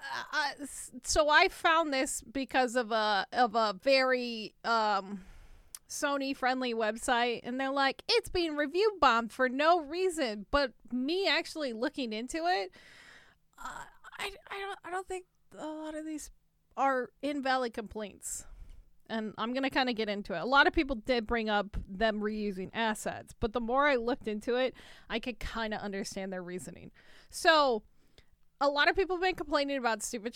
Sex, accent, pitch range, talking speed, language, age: female, American, 220-280 Hz, 170 wpm, English, 20-39